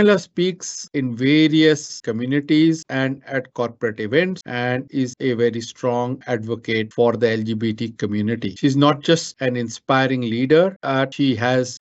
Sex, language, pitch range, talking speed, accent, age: male, English, 115-140 Hz, 135 wpm, Indian, 50-69